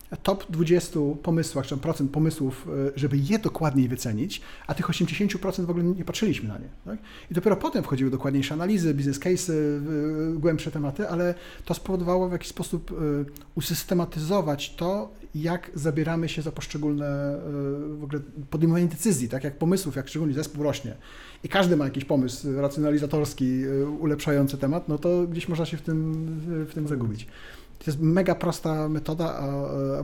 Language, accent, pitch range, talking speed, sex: Polish, native, 140-175 Hz, 160 wpm, male